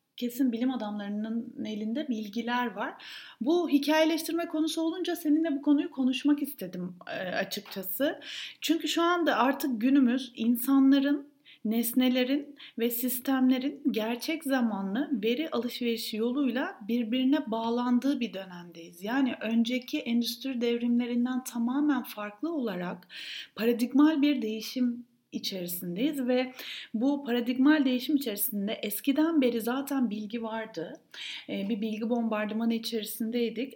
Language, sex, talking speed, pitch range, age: Turkish, female, 105 wpm, 230-285 Hz, 30-49